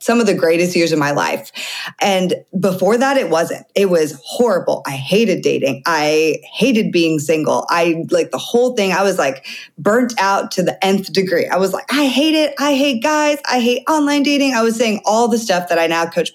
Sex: female